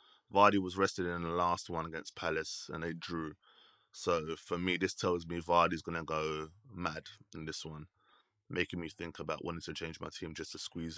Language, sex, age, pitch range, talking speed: English, male, 20-39, 85-105 Hz, 210 wpm